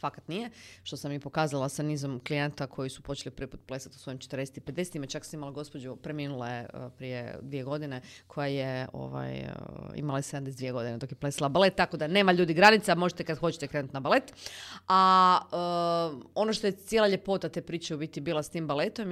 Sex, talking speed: female, 195 wpm